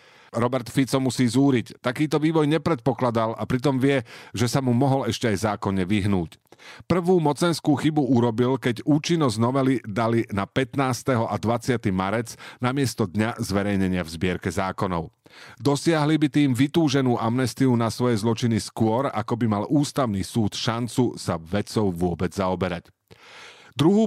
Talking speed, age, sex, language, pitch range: 140 wpm, 40-59, male, Slovak, 105-140 Hz